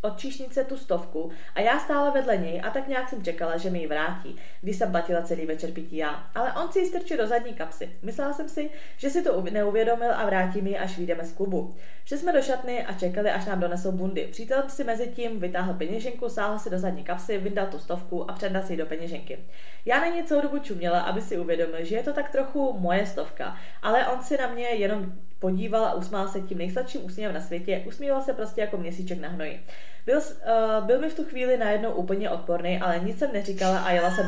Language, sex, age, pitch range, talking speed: Czech, female, 20-39, 180-250 Hz, 230 wpm